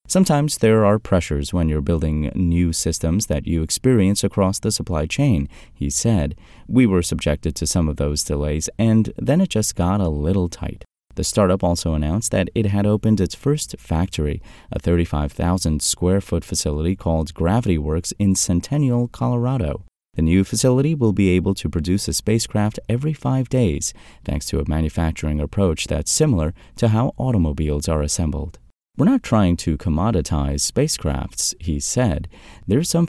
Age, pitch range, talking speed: 30-49, 80-110 Hz, 160 wpm